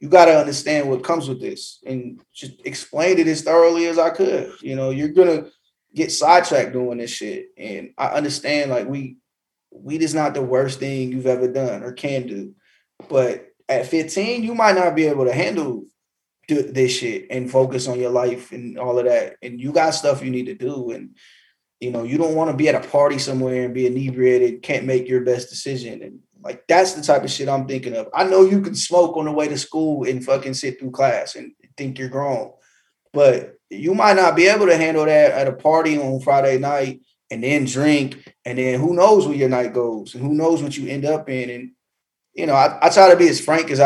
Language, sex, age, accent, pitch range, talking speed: English, male, 20-39, American, 130-160 Hz, 230 wpm